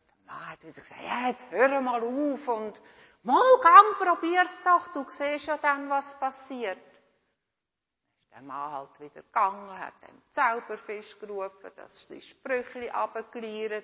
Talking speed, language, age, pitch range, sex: 150 wpm, German, 60-79, 185-315 Hz, female